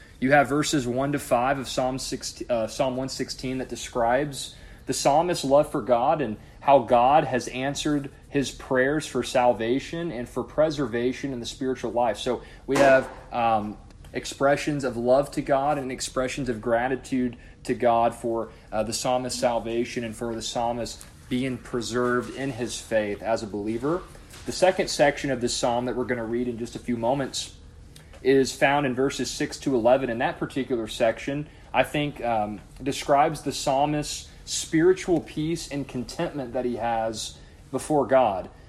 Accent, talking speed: American, 165 wpm